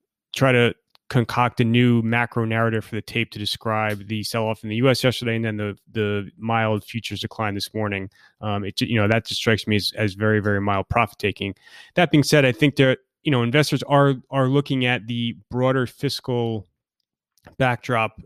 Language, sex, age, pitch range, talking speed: English, male, 30-49, 110-130 Hz, 195 wpm